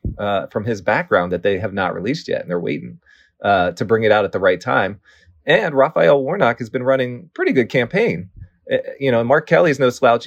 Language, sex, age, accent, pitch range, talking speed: English, male, 30-49, American, 90-120 Hz, 220 wpm